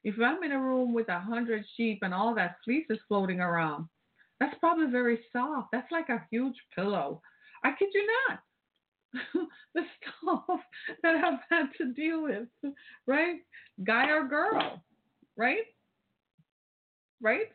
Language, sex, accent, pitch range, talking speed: English, female, American, 200-275 Hz, 145 wpm